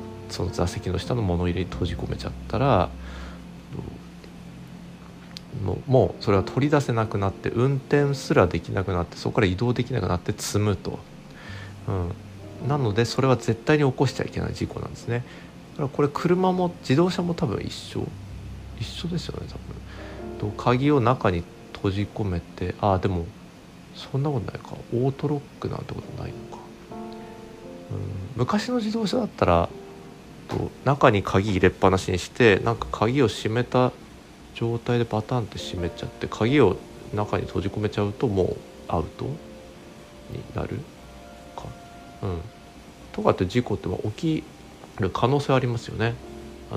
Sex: male